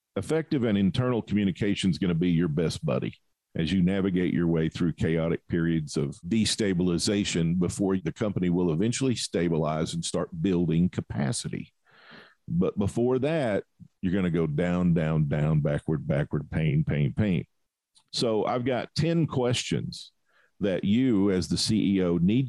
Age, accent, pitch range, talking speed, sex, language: 50-69, American, 85-110 Hz, 150 wpm, male, English